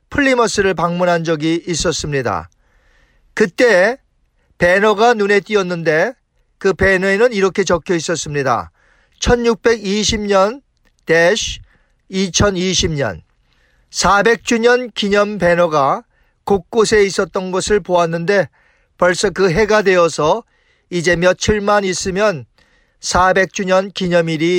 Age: 40-59